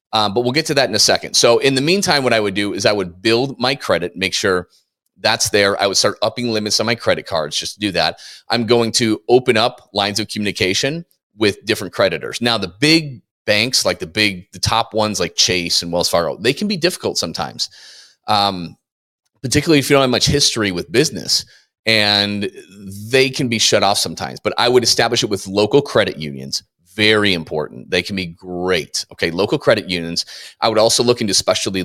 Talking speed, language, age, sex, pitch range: 215 wpm, English, 30-49, male, 95-125 Hz